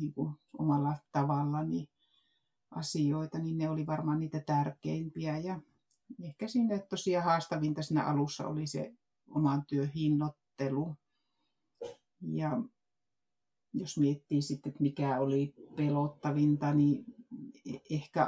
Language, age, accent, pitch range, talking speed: Finnish, 60-79, native, 145-155 Hz, 100 wpm